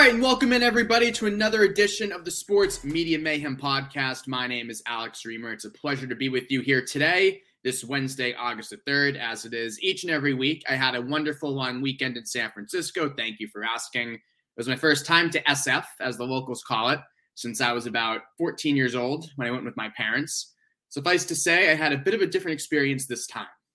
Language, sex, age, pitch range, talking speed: English, male, 20-39, 125-160 Hz, 230 wpm